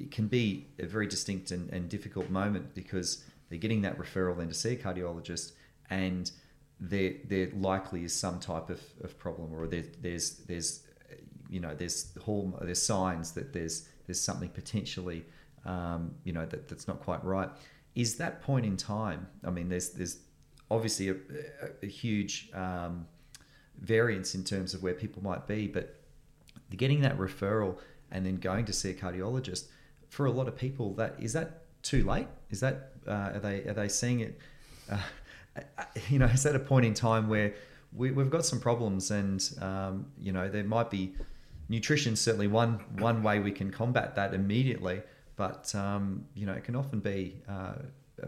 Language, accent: English, Australian